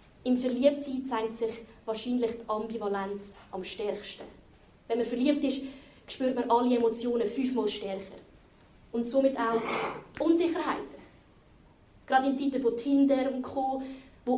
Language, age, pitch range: German, 20-39, 235-275 Hz